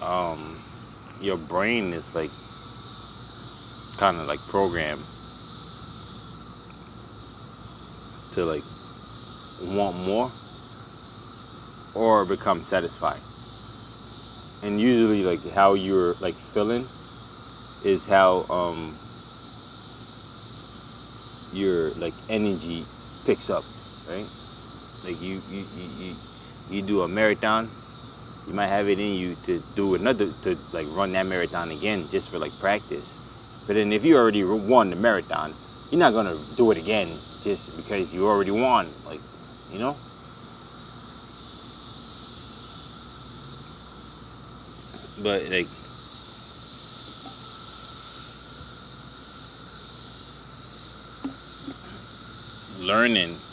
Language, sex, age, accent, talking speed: English, male, 20-39, American, 95 wpm